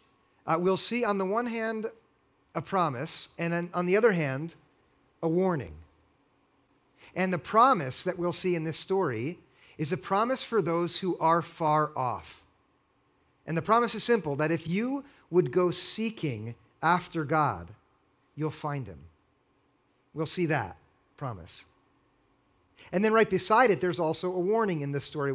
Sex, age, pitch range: male, 50-69, 145-195 Hz